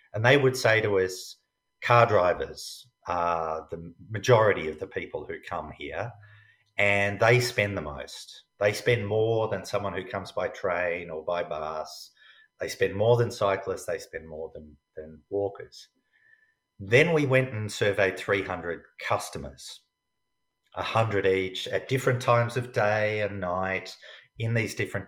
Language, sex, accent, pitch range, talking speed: English, male, Australian, 95-125 Hz, 155 wpm